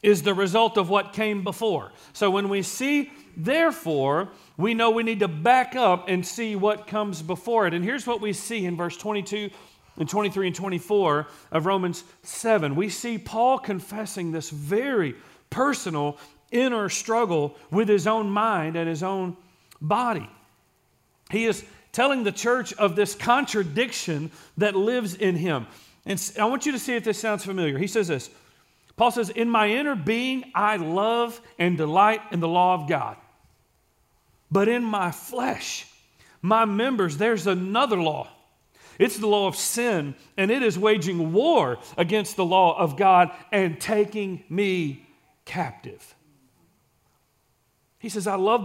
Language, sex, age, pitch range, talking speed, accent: English, male, 40-59, 175-225 Hz, 160 wpm, American